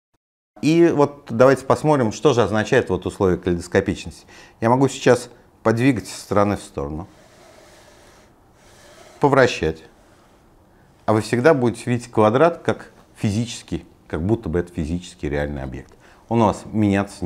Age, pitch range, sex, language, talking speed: 50-69, 85-115 Hz, male, Russian, 130 wpm